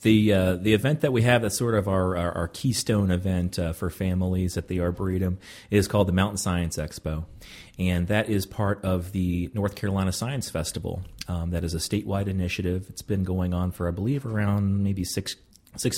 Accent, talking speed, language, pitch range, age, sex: American, 205 wpm, English, 90-105 Hz, 30-49, male